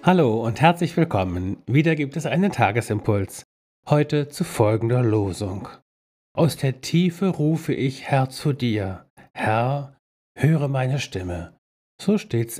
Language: German